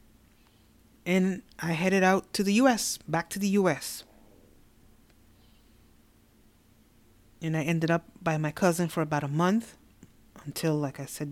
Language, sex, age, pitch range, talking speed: English, female, 30-49, 115-165 Hz, 140 wpm